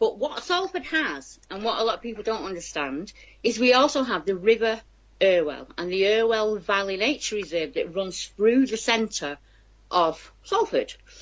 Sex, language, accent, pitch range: female, English, British, 180-255 Hz